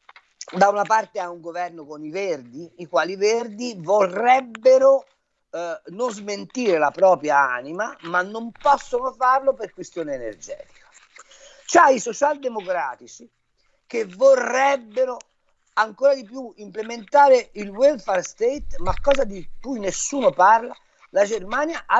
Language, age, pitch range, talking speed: Italian, 50-69, 180-275 Hz, 130 wpm